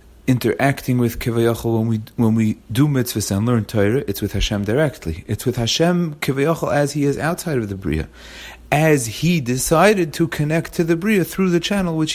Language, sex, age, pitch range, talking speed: English, male, 30-49, 110-150 Hz, 195 wpm